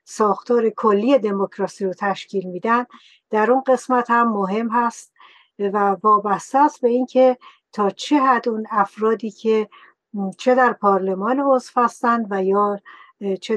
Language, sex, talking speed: Persian, female, 135 wpm